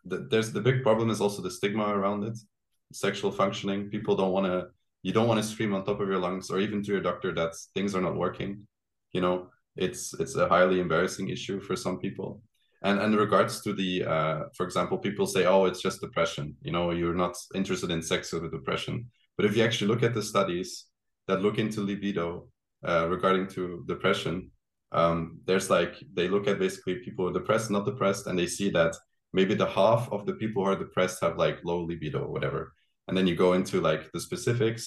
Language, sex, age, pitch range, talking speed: English, male, 20-39, 90-105 Hz, 220 wpm